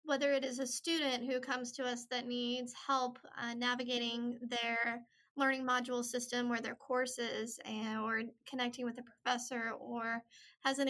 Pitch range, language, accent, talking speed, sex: 235-270 Hz, English, American, 160 wpm, female